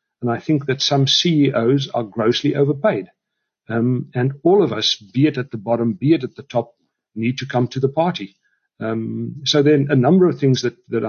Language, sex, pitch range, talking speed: English, male, 115-140 Hz, 215 wpm